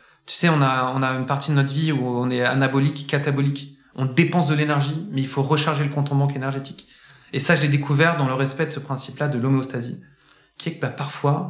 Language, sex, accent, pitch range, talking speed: French, male, French, 135-150 Hz, 245 wpm